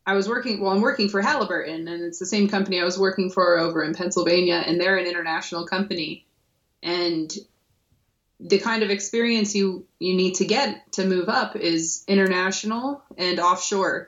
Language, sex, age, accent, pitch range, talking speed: English, female, 20-39, American, 170-200 Hz, 180 wpm